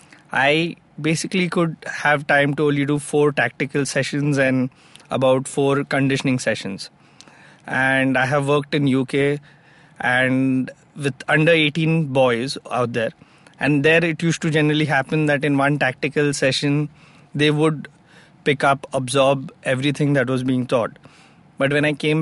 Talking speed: 150 wpm